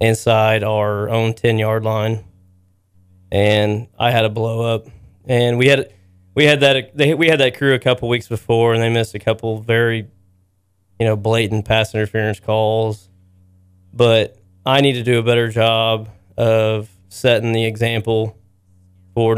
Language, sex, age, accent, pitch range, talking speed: English, male, 20-39, American, 100-120 Hz, 160 wpm